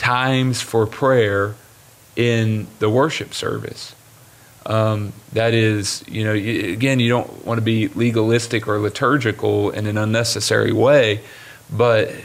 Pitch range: 105-120 Hz